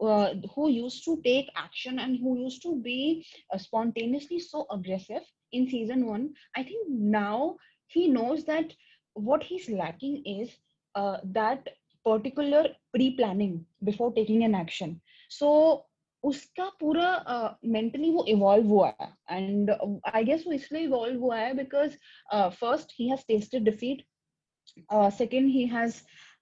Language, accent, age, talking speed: Hindi, native, 20-39, 145 wpm